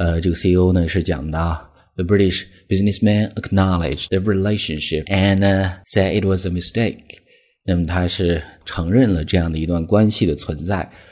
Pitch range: 85-105 Hz